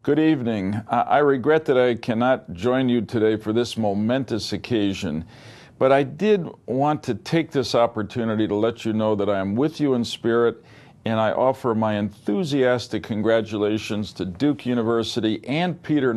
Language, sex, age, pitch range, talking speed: English, male, 50-69, 105-135 Hz, 165 wpm